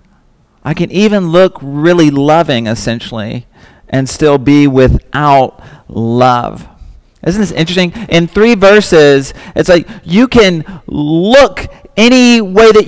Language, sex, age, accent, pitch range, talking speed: English, male, 40-59, American, 150-200 Hz, 120 wpm